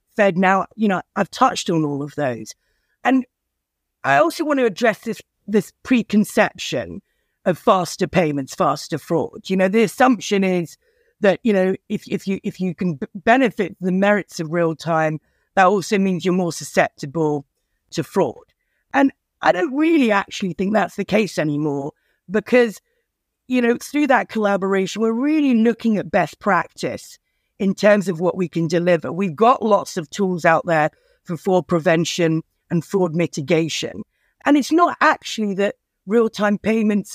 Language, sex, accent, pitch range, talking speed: English, female, British, 180-230 Hz, 165 wpm